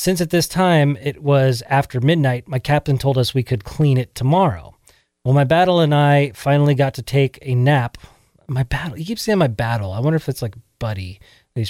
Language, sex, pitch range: English, male, 120-150 Hz